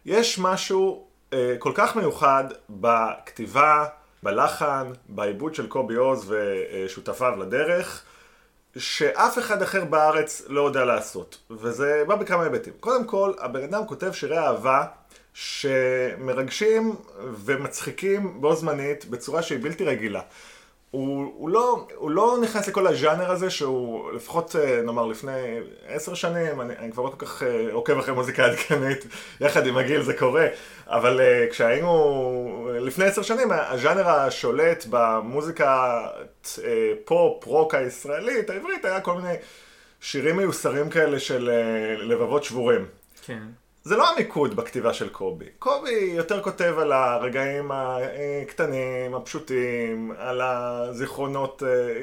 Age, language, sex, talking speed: 30-49, Hebrew, male, 115 wpm